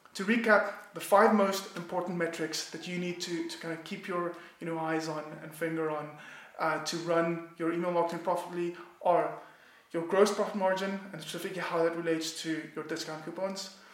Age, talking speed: 20-39, 190 wpm